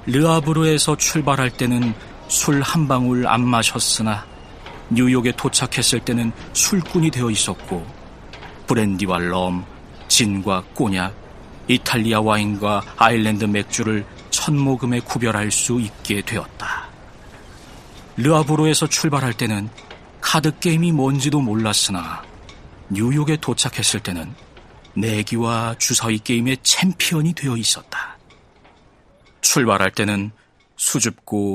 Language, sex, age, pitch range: Korean, male, 40-59, 110-145 Hz